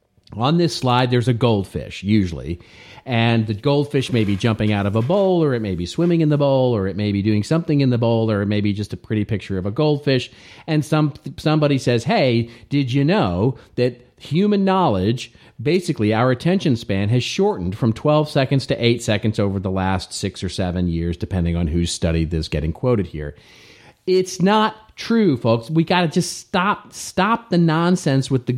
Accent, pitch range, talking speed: American, 105-140 Hz, 205 wpm